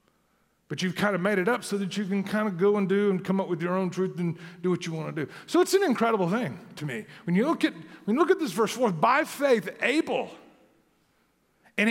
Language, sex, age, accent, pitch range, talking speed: English, male, 50-69, American, 180-230 Hz, 260 wpm